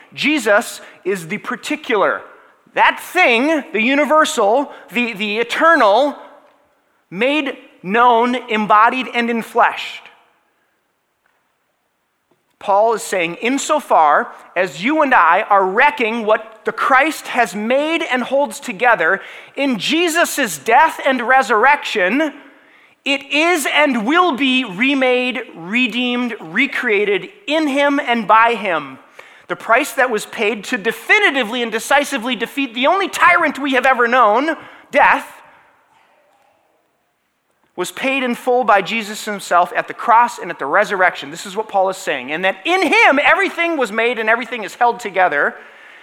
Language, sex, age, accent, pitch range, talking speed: English, male, 30-49, American, 225-285 Hz, 135 wpm